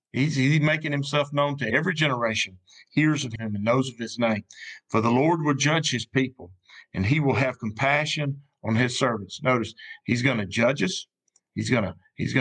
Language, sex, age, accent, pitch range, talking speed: English, male, 50-69, American, 115-145 Hz, 200 wpm